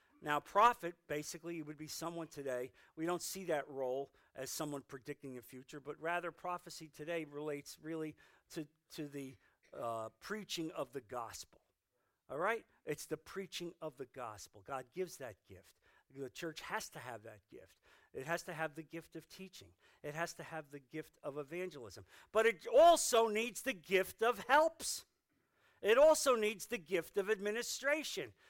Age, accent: 50-69, American